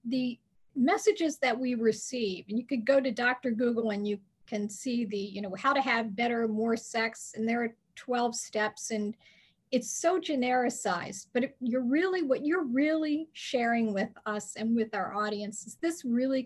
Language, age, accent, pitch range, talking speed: English, 40-59, American, 220-260 Hz, 180 wpm